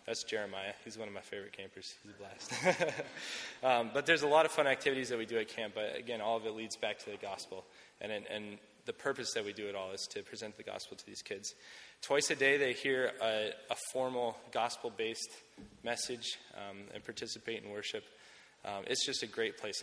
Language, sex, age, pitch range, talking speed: English, male, 20-39, 100-145 Hz, 220 wpm